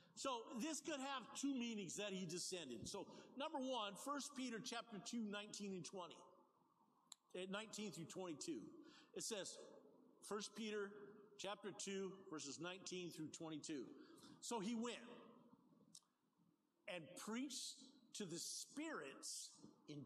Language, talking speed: English, 125 wpm